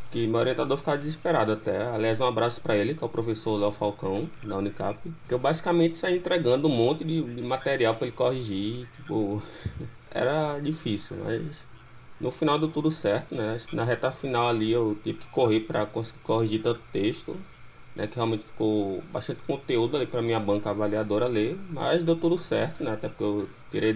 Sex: male